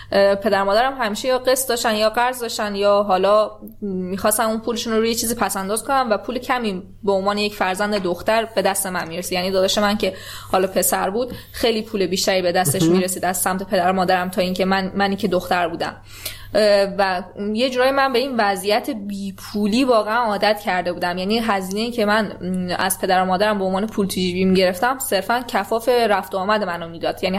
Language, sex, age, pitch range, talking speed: Persian, female, 20-39, 190-225 Hz, 205 wpm